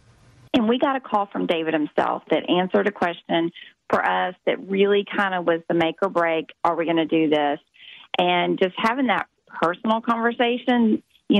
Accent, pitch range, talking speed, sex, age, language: American, 160-200 Hz, 190 wpm, female, 30-49, English